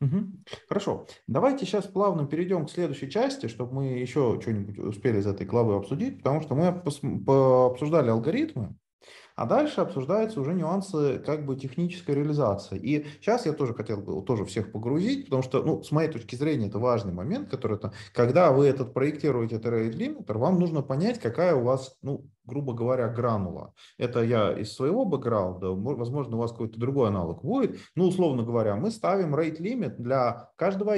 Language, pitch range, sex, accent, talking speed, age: Russian, 115-170 Hz, male, native, 175 wpm, 30-49